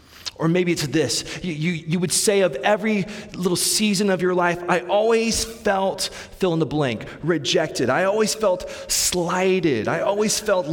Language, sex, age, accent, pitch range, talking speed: English, male, 30-49, American, 120-185 Hz, 175 wpm